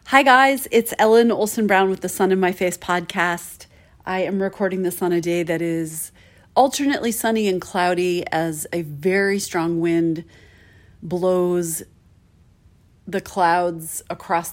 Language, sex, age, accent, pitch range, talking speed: English, female, 30-49, American, 165-200 Hz, 145 wpm